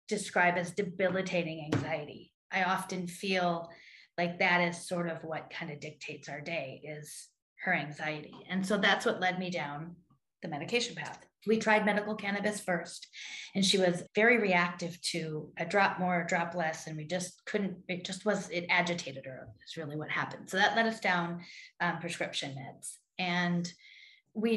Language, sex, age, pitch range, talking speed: English, female, 30-49, 170-195 Hz, 175 wpm